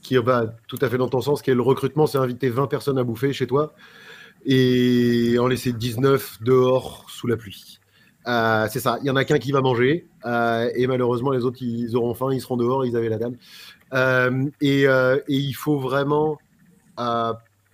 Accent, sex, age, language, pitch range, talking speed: French, male, 30-49, French, 125-150 Hz, 215 wpm